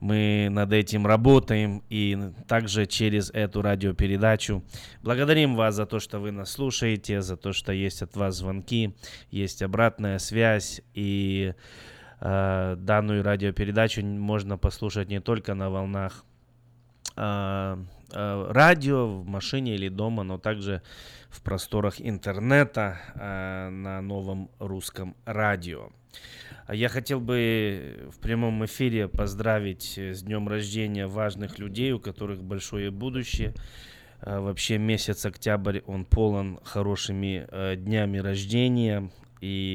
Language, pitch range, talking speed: Russian, 95-110 Hz, 120 wpm